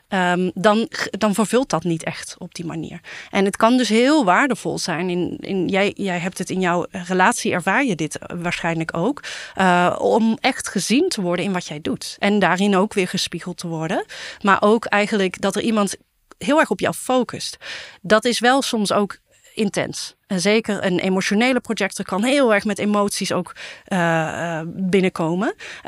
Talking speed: 175 wpm